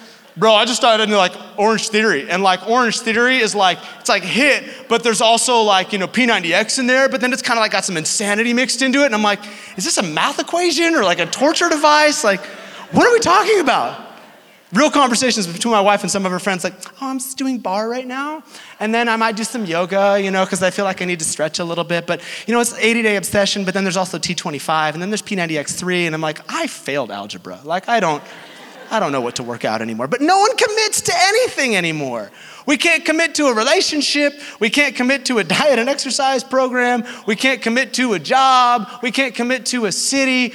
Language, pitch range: English, 195-260 Hz